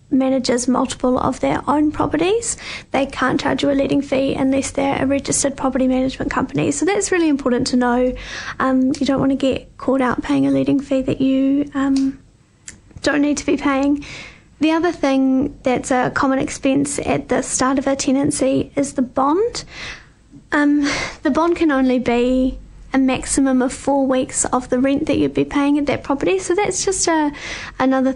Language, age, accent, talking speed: English, 30-49, Australian, 185 wpm